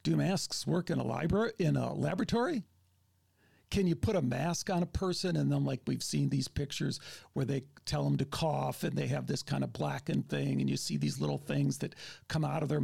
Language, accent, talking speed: English, American, 230 wpm